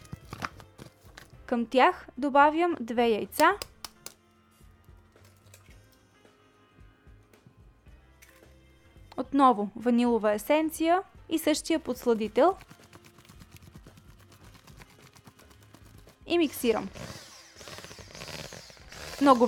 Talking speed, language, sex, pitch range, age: 45 wpm, Bulgarian, female, 235-305 Hz, 20-39